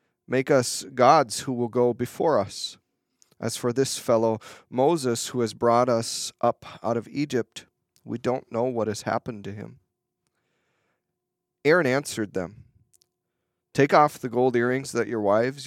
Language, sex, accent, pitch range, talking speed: English, male, American, 110-130 Hz, 155 wpm